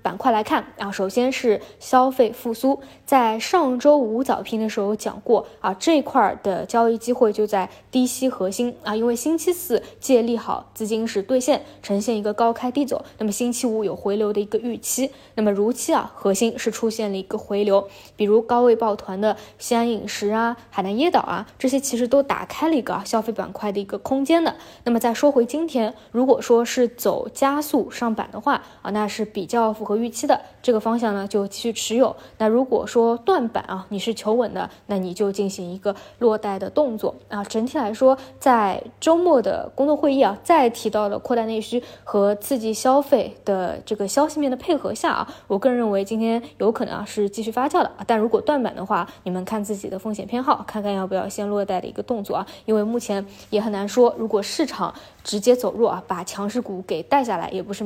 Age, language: 20-39, Chinese